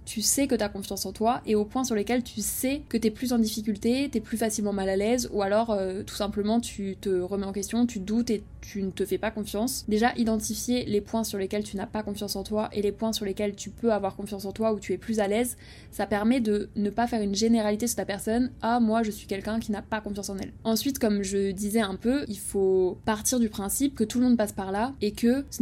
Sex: female